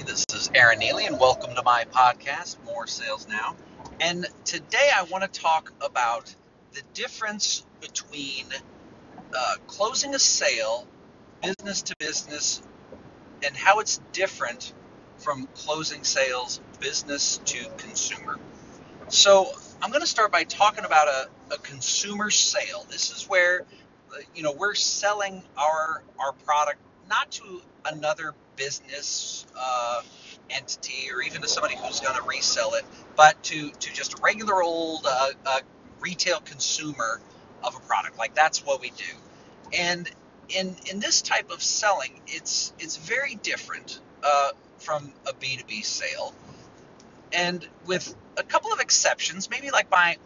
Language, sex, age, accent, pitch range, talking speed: English, male, 40-59, American, 140-200 Hz, 145 wpm